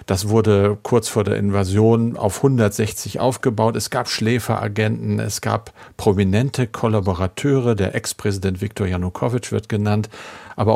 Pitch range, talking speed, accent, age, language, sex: 100-120 Hz, 130 wpm, German, 50-69, German, male